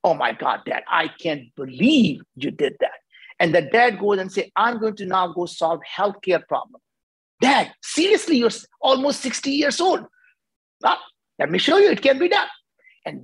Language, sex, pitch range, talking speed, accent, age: English, male, 175-235 Hz, 185 wpm, Indian, 50-69